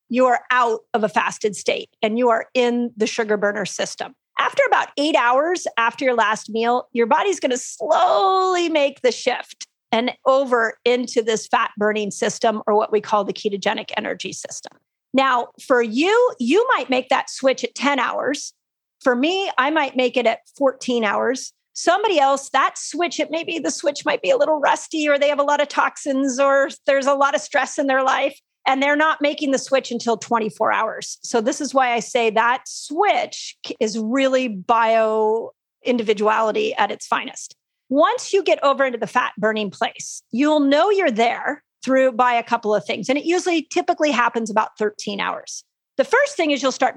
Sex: female